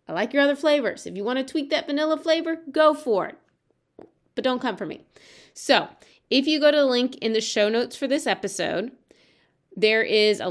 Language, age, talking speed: English, 30-49, 210 wpm